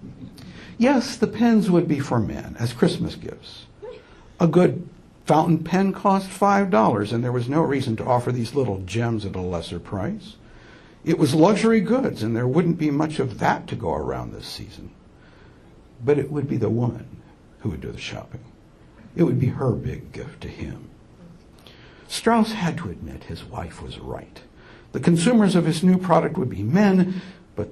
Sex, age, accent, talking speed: male, 60-79, American, 180 wpm